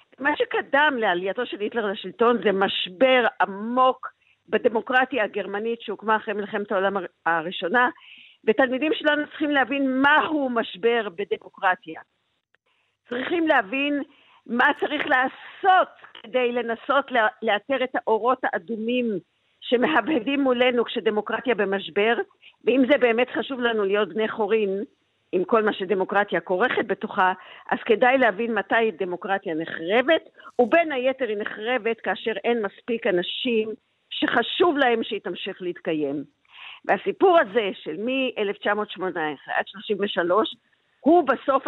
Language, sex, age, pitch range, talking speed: Hebrew, female, 50-69, 205-265 Hz, 115 wpm